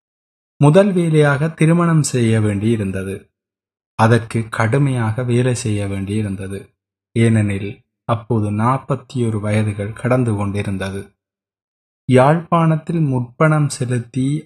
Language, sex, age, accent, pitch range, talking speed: Tamil, male, 20-39, native, 105-135 Hz, 85 wpm